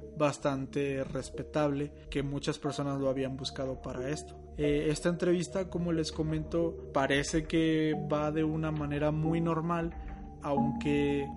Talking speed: 130 wpm